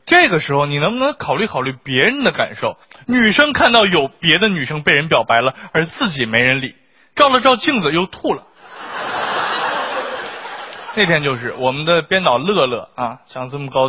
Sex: male